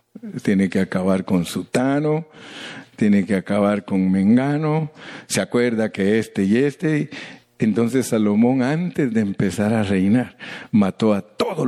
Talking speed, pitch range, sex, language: 135 wpm, 100-125 Hz, male, Spanish